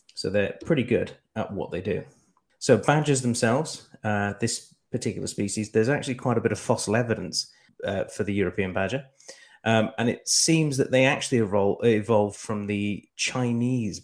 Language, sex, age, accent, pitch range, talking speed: English, male, 30-49, British, 100-120 Hz, 170 wpm